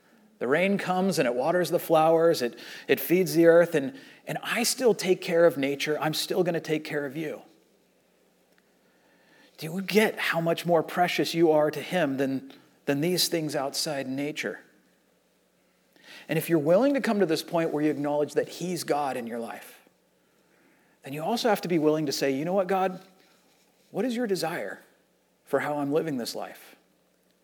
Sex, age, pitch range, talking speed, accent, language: male, 40-59, 150-190 Hz, 190 wpm, American, English